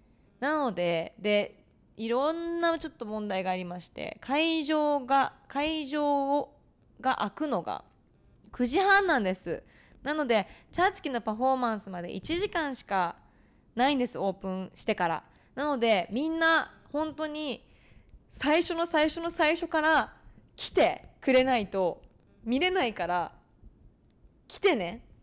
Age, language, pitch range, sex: 20-39, Japanese, 190-290 Hz, female